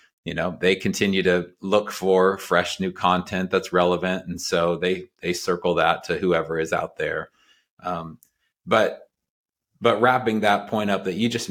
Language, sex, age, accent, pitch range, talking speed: English, male, 30-49, American, 90-105 Hz, 170 wpm